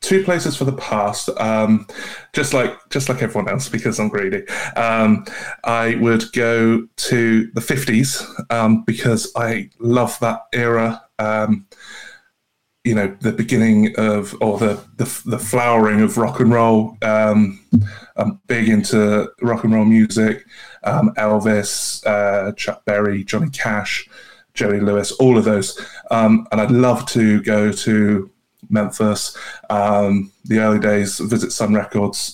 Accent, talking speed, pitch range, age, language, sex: British, 145 wpm, 105-115 Hz, 20-39, English, male